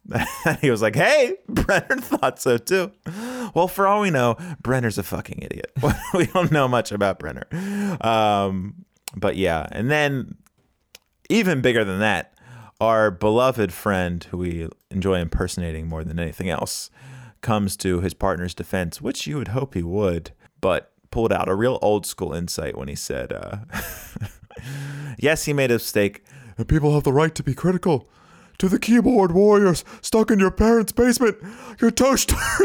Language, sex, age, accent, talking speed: English, male, 30-49, American, 165 wpm